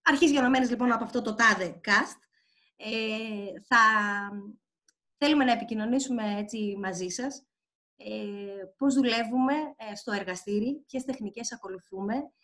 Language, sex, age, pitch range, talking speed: Greek, female, 20-39, 190-265 Hz, 120 wpm